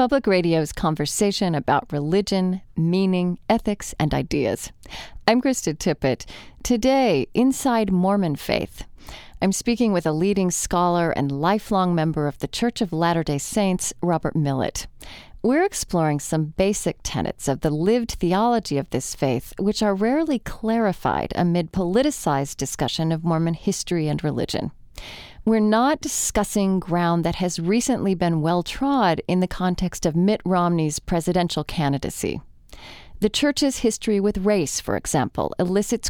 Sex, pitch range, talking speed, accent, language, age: female, 160-215 Hz, 135 wpm, American, English, 30-49